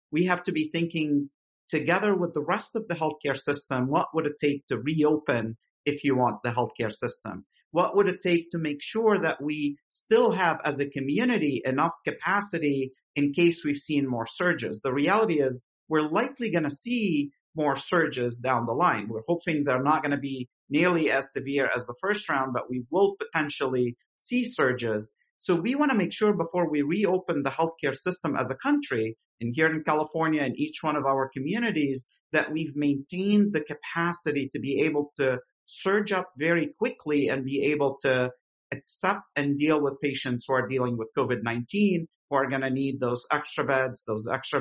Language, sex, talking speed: English, male, 190 wpm